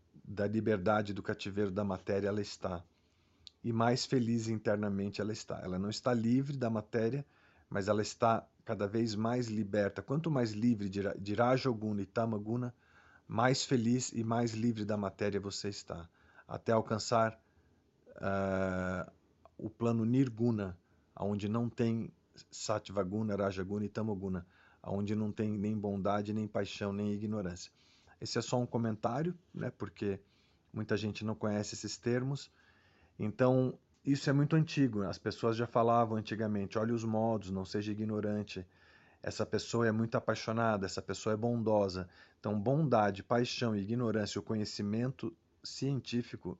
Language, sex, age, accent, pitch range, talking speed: English, male, 40-59, Brazilian, 100-115 Hz, 155 wpm